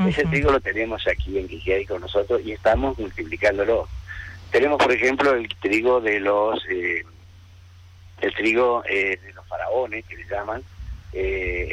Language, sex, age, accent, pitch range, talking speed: Spanish, male, 50-69, Argentinian, 95-135 Hz, 155 wpm